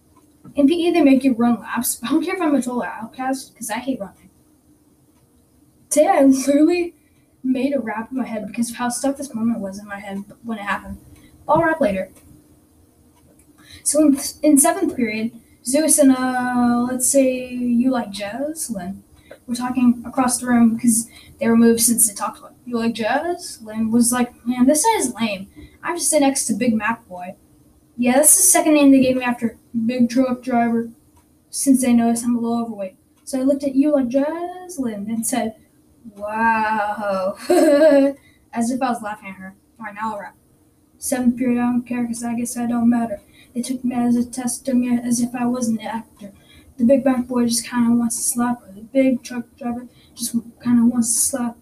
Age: 10-29